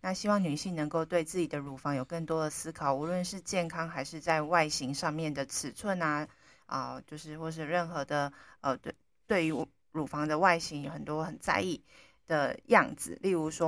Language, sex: Chinese, female